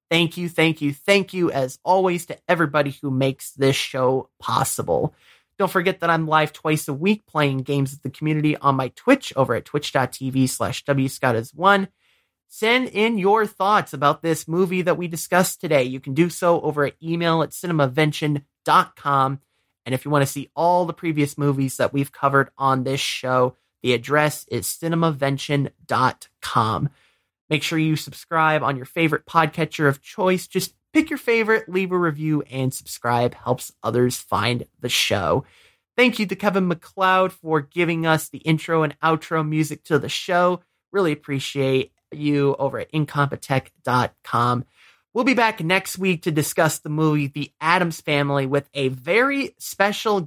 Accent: American